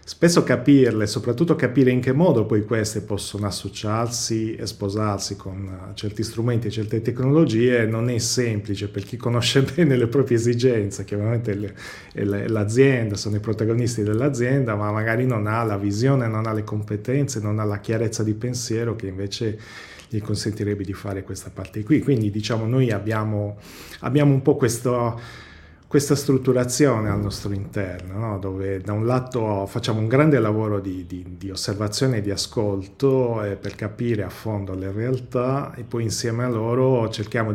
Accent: native